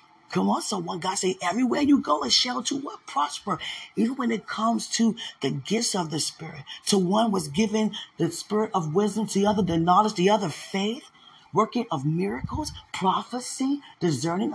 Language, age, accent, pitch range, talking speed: English, 30-49, American, 170-225 Hz, 180 wpm